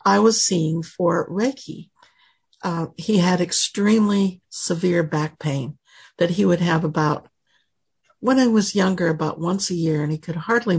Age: 60-79